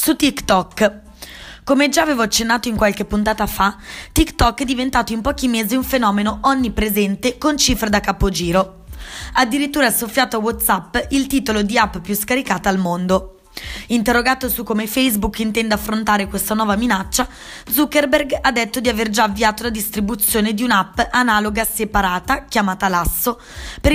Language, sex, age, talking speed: Italian, female, 20-39, 155 wpm